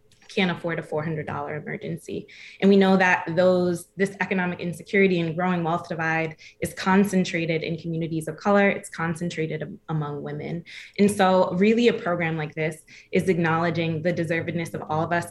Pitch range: 160-185 Hz